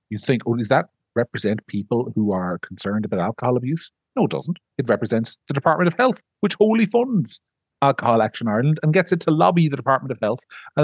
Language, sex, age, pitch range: English, male, 40-59, 110-150 Hz